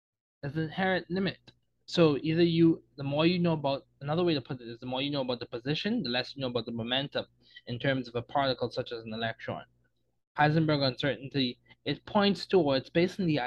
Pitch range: 120-160 Hz